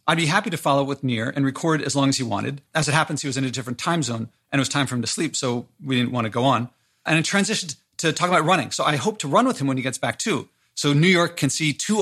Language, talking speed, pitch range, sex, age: English, 320 wpm, 130-165 Hz, male, 40-59